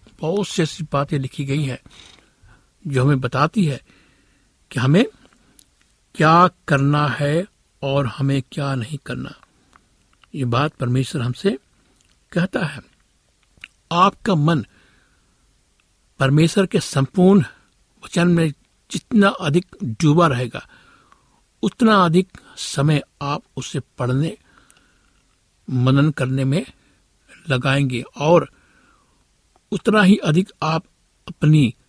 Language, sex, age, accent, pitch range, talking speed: Hindi, male, 60-79, native, 130-170 Hz, 100 wpm